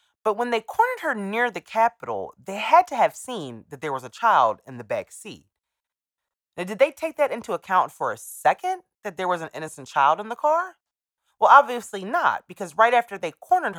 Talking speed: 215 wpm